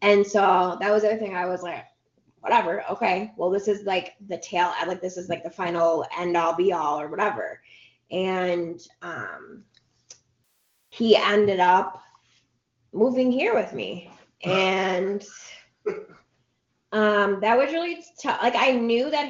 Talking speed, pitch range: 155 wpm, 175-210 Hz